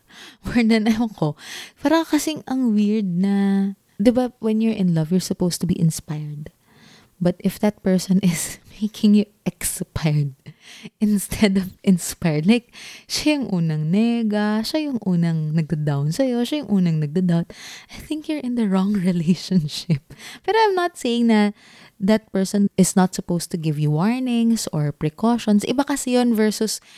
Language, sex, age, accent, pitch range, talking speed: English, female, 20-39, Filipino, 165-230 Hz, 155 wpm